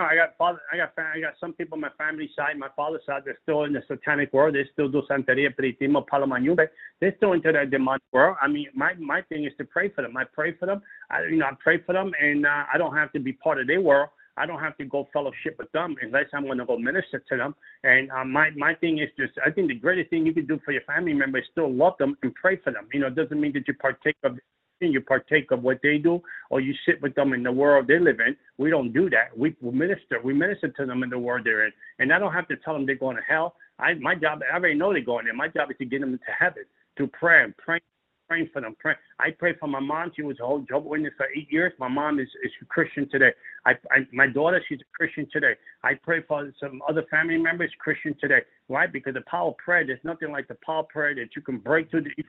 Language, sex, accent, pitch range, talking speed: English, male, American, 140-165 Hz, 280 wpm